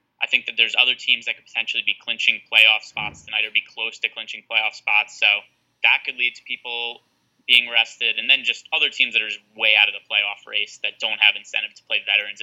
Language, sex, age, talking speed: English, male, 20-39, 235 wpm